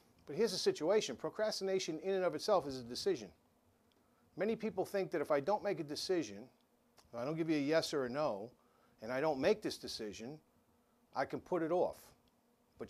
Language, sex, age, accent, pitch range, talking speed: English, male, 50-69, American, 140-205 Hz, 200 wpm